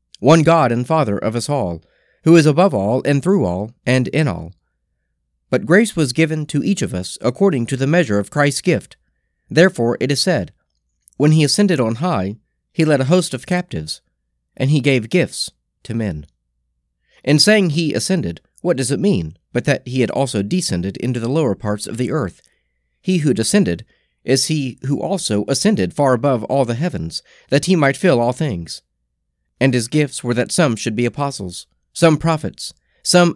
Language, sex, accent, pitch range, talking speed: English, male, American, 100-165 Hz, 190 wpm